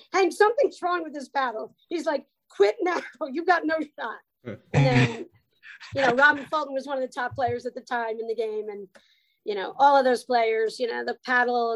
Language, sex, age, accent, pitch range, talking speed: English, female, 40-59, American, 240-330 Hz, 215 wpm